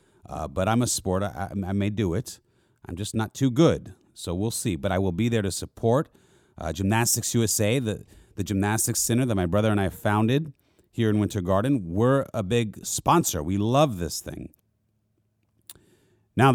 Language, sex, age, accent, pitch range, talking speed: English, male, 40-59, American, 95-125 Hz, 185 wpm